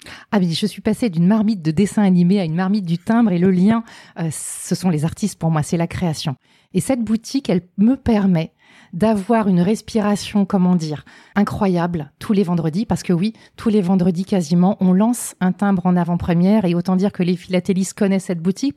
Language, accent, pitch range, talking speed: French, French, 175-215 Hz, 210 wpm